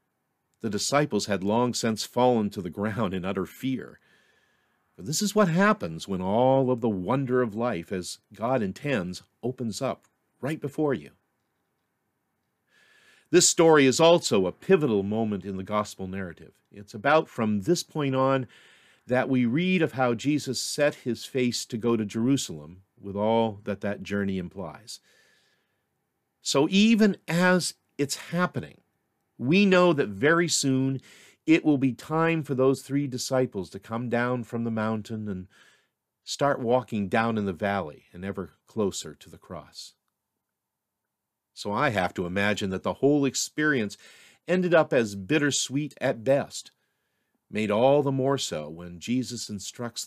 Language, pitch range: English, 100-140 Hz